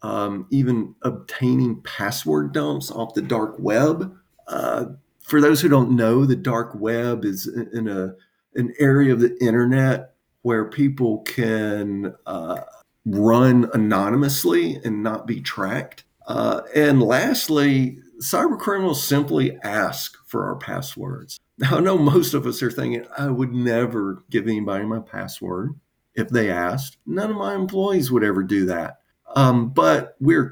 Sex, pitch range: male, 110-140 Hz